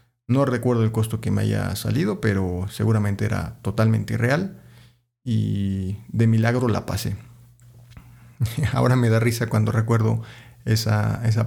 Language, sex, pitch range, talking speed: Spanish, male, 110-125 Hz, 135 wpm